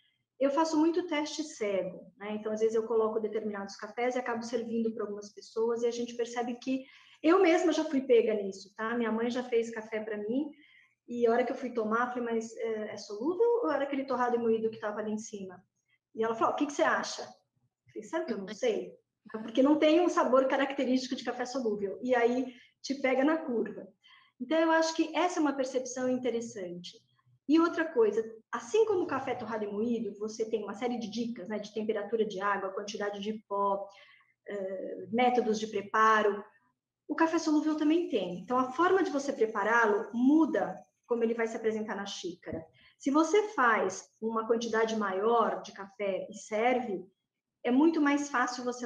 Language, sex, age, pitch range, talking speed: Portuguese, female, 20-39, 215-265 Hz, 200 wpm